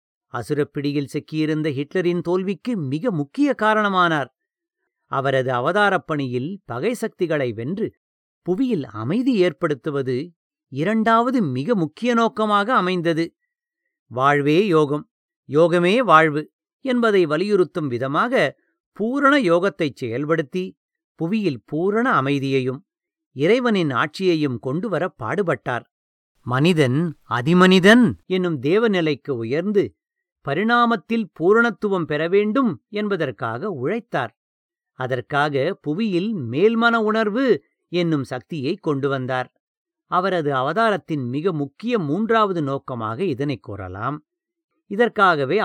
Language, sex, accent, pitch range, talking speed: English, male, Indian, 145-220 Hz, 85 wpm